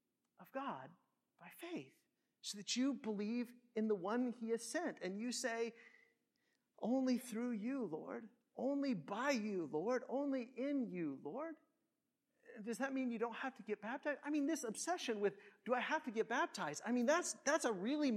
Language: English